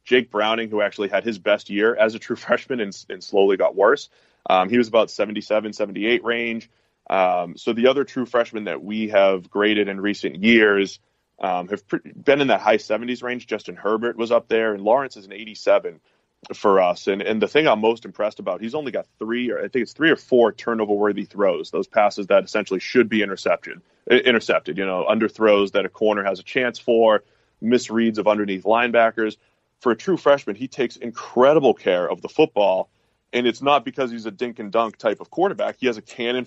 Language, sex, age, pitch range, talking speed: English, male, 30-49, 105-120 Hz, 210 wpm